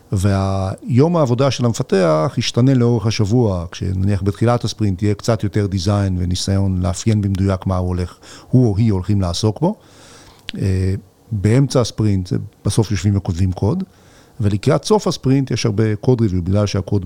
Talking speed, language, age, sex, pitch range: 150 wpm, Hebrew, 50-69, male, 100-120 Hz